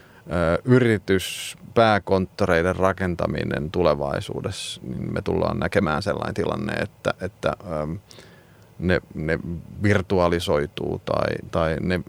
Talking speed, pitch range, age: 85 wpm, 90-105 Hz, 30-49